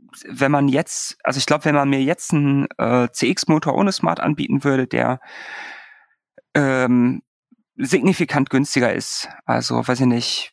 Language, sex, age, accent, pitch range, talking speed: German, male, 30-49, German, 120-140 Hz, 150 wpm